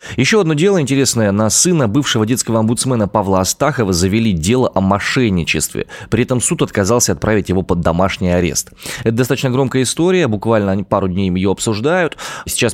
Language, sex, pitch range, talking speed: Russian, male, 100-130 Hz, 160 wpm